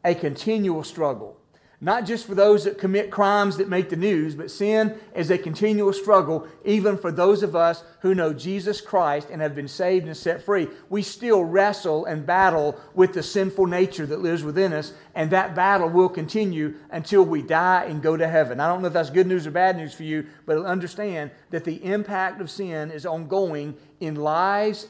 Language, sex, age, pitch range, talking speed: English, male, 40-59, 155-200 Hz, 200 wpm